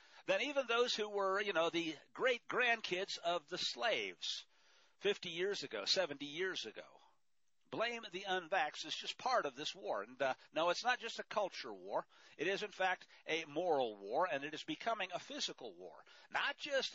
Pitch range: 175-240 Hz